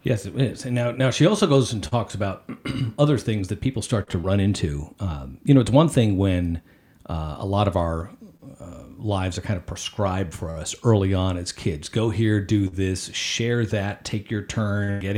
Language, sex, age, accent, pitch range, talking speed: English, male, 50-69, American, 95-120 Hz, 215 wpm